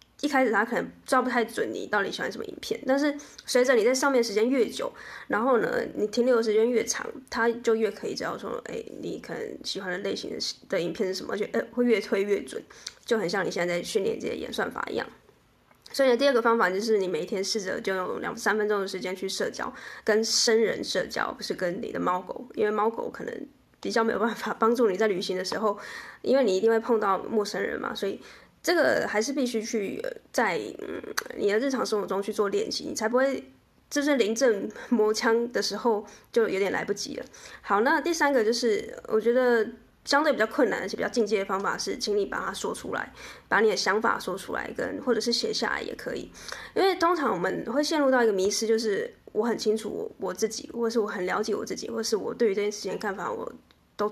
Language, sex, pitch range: Chinese, female, 215-290 Hz